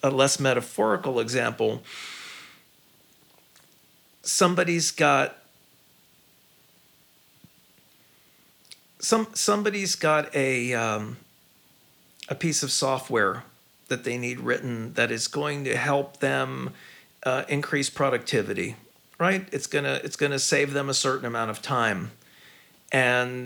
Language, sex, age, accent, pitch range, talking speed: English, male, 40-59, American, 120-165 Hz, 105 wpm